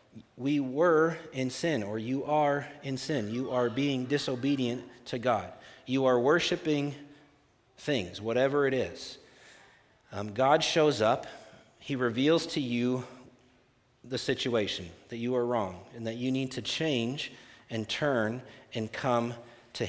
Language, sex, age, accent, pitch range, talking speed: English, male, 40-59, American, 110-130 Hz, 140 wpm